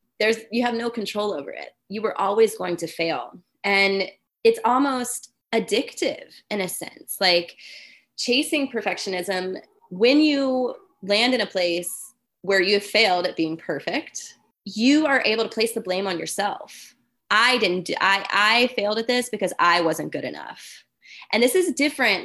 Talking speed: 165 wpm